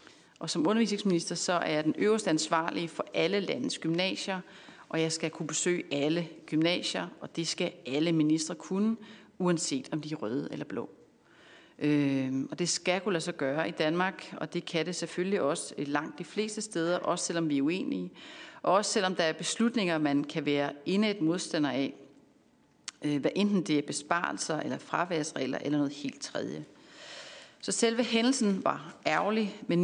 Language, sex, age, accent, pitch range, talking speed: Danish, female, 40-59, native, 160-205 Hz, 175 wpm